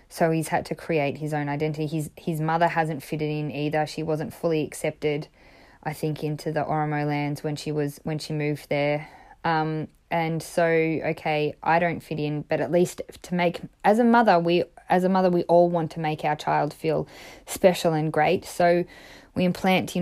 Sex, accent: female, Australian